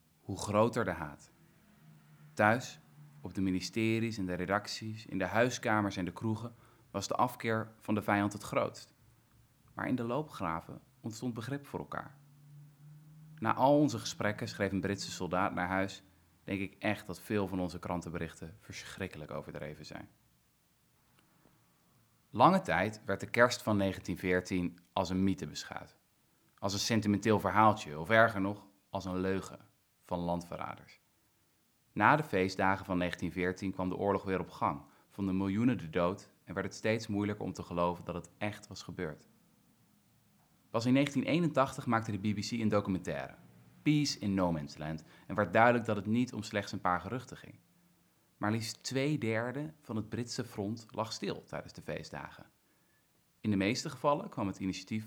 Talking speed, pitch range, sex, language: 165 wpm, 95-115 Hz, male, Dutch